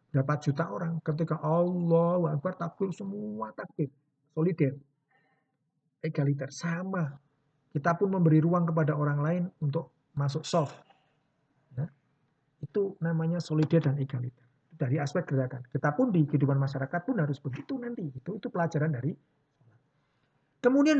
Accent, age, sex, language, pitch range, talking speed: native, 50-69, male, Indonesian, 145-200 Hz, 130 wpm